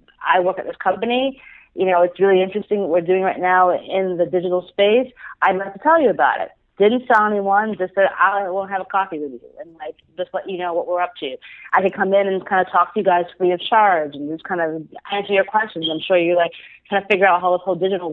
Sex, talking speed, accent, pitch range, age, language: female, 270 wpm, American, 170-195 Hz, 30-49, English